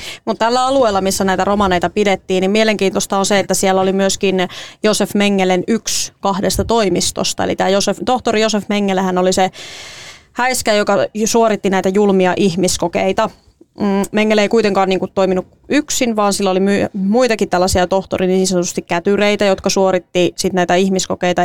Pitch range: 185-205 Hz